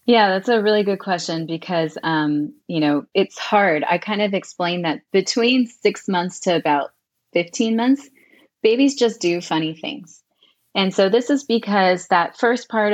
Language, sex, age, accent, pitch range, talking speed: English, female, 30-49, American, 175-225 Hz, 170 wpm